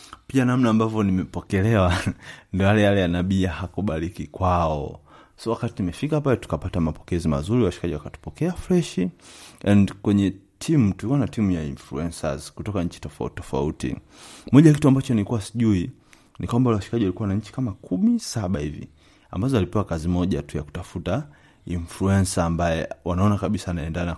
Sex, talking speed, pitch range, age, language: male, 140 wpm, 85-110 Hz, 30-49, Swahili